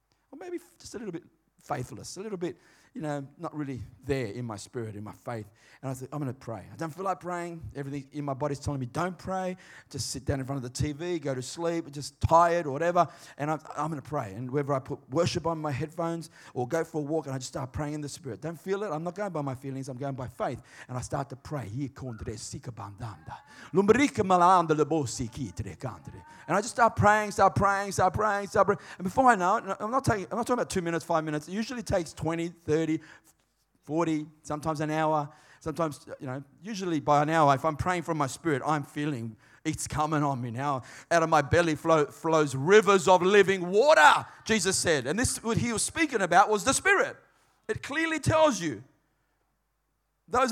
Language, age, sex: English, 30-49, male